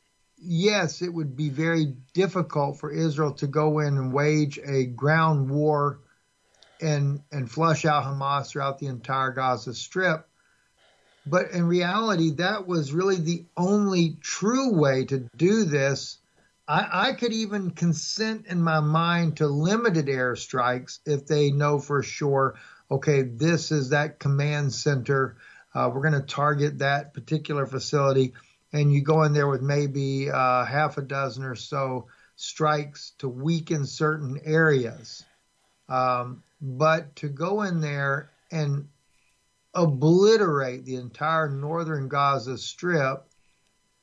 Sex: male